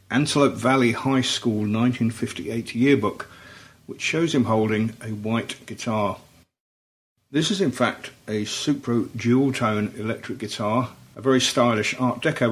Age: 50-69